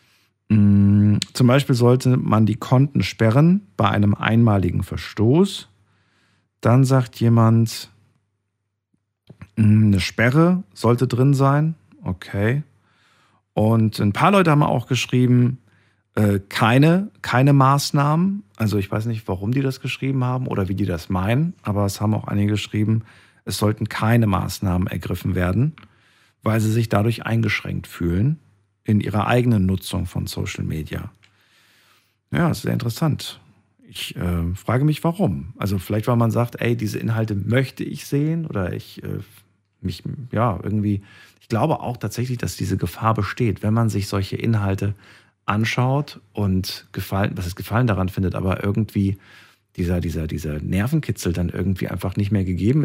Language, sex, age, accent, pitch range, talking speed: German, male, 50-69, German, 100-125 Hz, 145 wpm